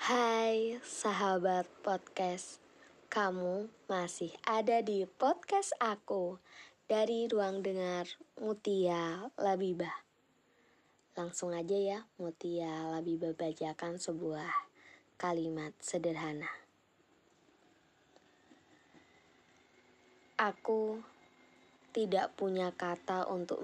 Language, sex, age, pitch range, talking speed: Indonesian, female, 20-39, 170-200 Hz, 70 wpm